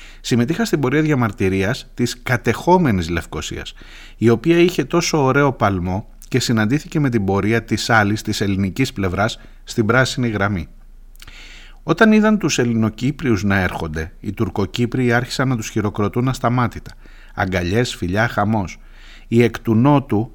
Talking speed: 135 wpm